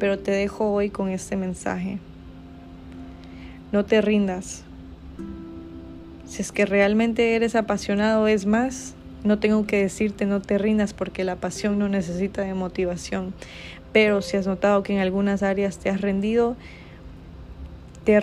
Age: 20-39